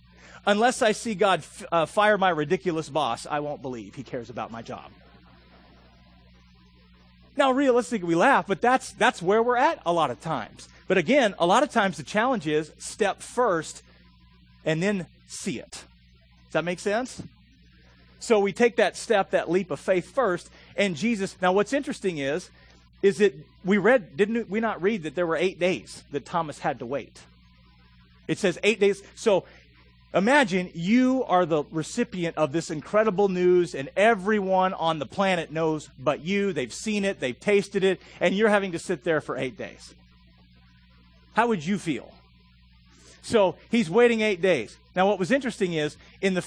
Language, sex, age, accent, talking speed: English, male, 40-59, American, 175 wpm